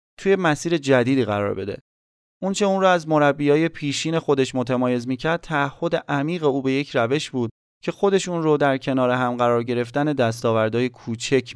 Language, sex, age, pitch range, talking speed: Persian, male, 30-49, 120-150 Hz, 165 wpm